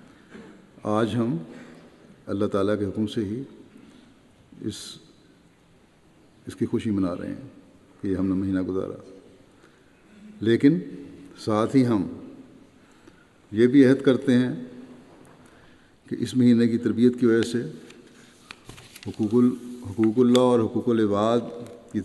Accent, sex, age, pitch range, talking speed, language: Indian, male, 50-69, 100-115 Hz, 85 wpm, English